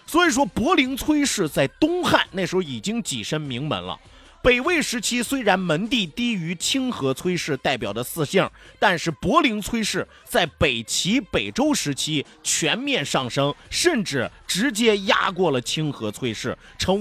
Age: 30-49